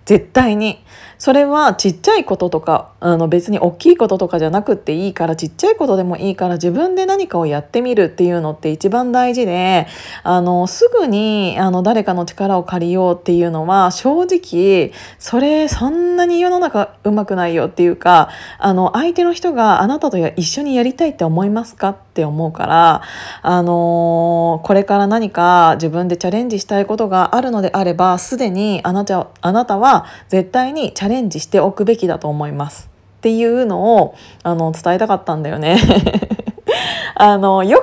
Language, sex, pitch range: Japanese, female, 175-240 Hz